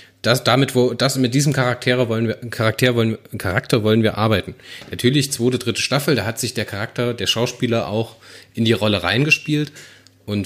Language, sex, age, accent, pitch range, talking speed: German, male, 30-49, German, 95-125 Hz, 185 wpm